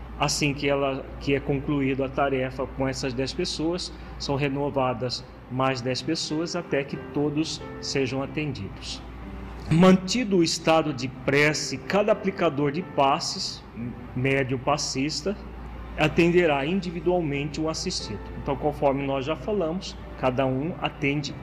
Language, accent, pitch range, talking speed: Portuguese, Brazilian, 130-155 Hz, 130 wpm